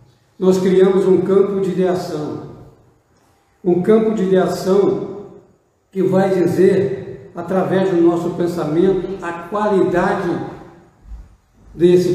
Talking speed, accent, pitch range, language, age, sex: 100 wpm, Brazilian, 165-195 Hz, Portuguese, 60-79, male